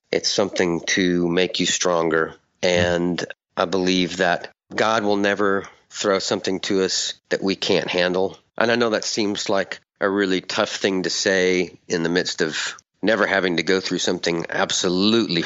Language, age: English, 40-59